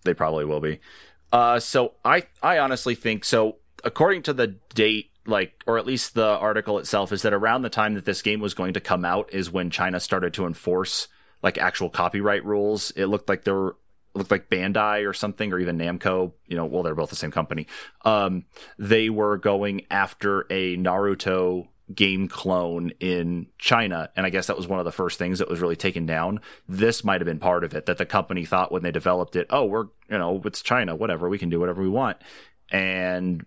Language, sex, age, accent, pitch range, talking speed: English, male, 30-49, American, 90-105 Hz, 215 wpm